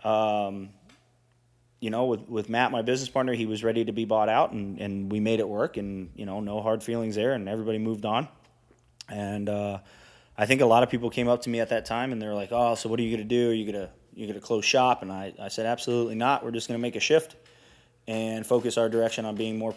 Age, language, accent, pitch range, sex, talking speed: 20-39, English, American, 110-125 Hz, male, 265 wpm